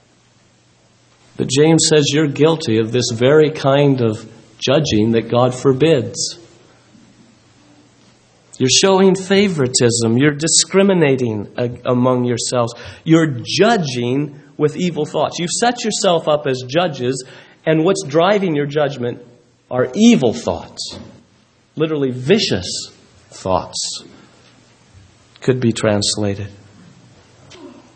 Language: English